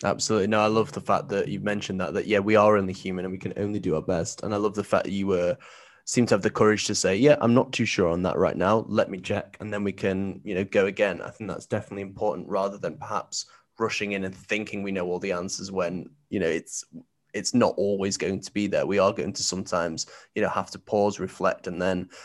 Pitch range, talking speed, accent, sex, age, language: 100-120 Hz, 265 wpm, British, male, 20-39, English